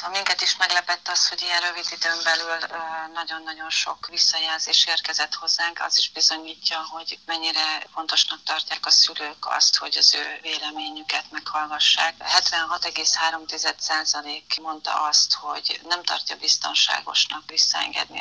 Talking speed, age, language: 125 wpm, 40-59, Hungarian